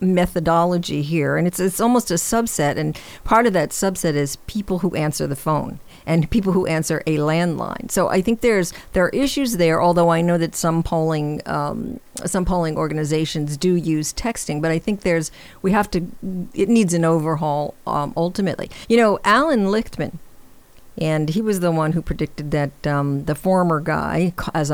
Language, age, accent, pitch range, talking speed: English, 50-69, American, 155-185 Hz, 185 wpm